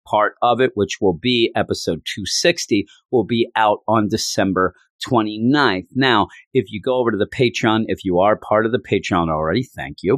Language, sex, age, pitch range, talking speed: English, male, 40-59, 95-115 Hz, 190 wpm